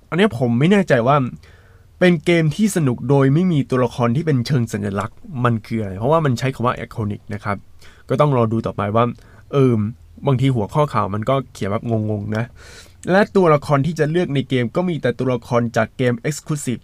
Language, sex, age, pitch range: Thai, male, 20-39, 115-150 Hz